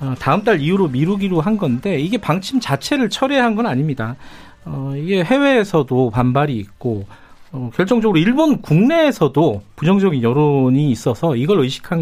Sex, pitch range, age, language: male, 130-210 Hz, 40-59, Korean